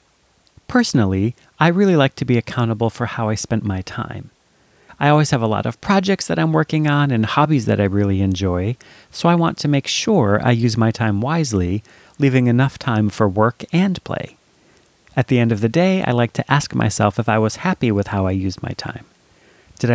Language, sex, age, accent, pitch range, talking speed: English, male, 30-49, American, 110-140 Hz, 210 wpm